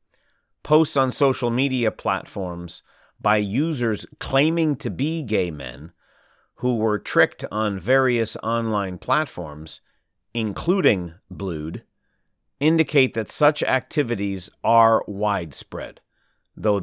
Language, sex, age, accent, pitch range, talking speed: English, male, 40-59, American, 95-130 Hz, 100 wpm